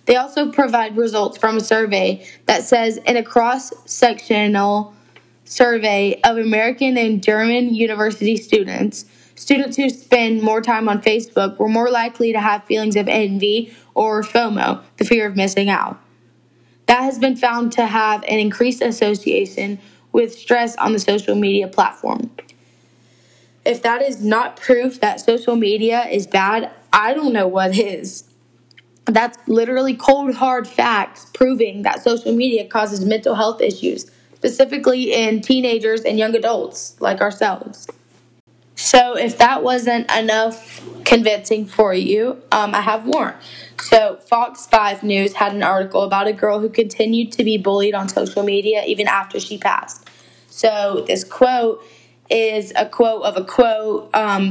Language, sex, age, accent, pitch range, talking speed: English, female, 10-29, American, 205-240 Hz, 150 wpm